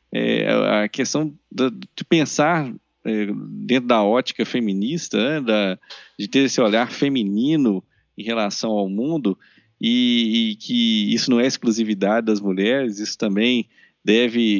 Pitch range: 105-130 Hz